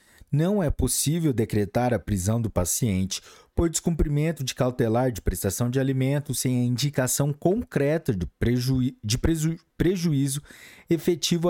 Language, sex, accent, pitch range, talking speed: Portuguese, male, Brazilian, 110-145 Hz, 120 wpm